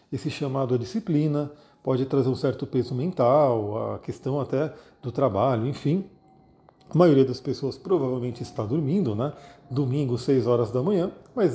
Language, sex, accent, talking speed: Portuguese, male, Brazilian, 155 wpm